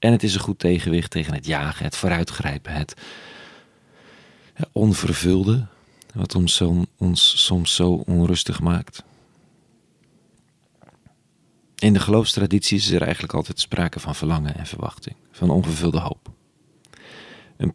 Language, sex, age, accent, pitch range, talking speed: Dutch, male, 40-59, Dutch, 80-95 Hz, 120 wpm